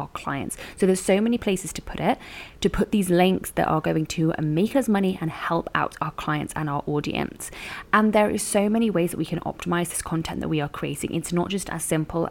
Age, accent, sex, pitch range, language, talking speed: 20-39, British, female, 155-195 Hz, English, 240 wpm